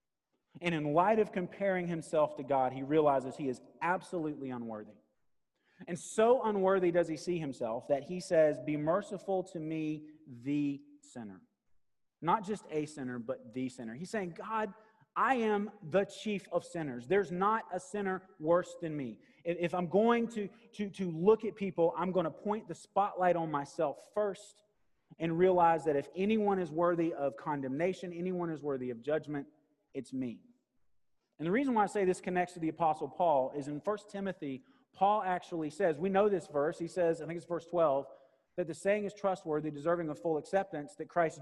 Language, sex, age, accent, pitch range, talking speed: English, male, 30-49, American, 155-200 Hz, 185 wpm